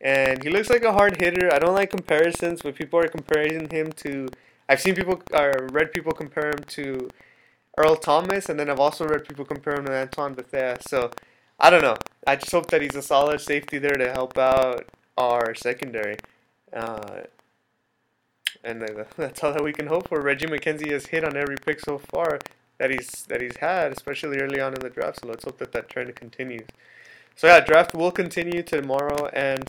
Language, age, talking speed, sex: English, 20-39, 200 wpm, male